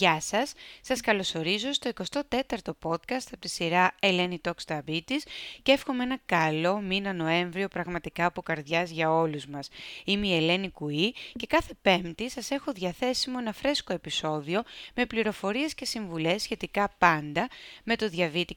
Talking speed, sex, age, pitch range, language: 150 wpm, female, 30-49, 165-230 Hz, Greek